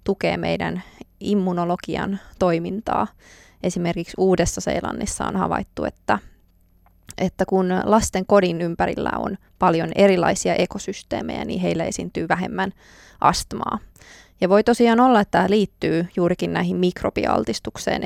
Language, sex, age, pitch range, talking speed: Finnish, female, 20-39, 165-200 Hz, 115 wpm